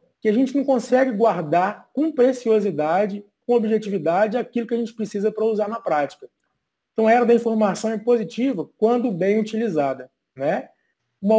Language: Portuguese